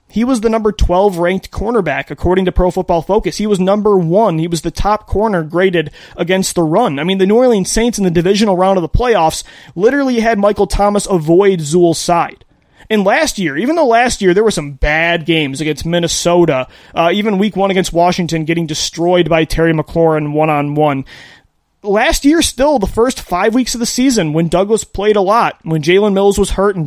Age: 30-49